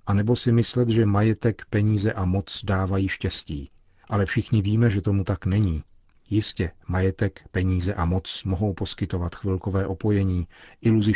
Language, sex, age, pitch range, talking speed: Czech, male, 40-59, 90-105 Hz, 150 wpm